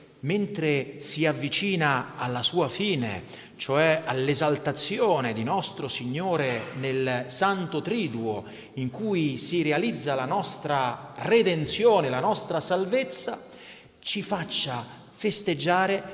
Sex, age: male, 30-49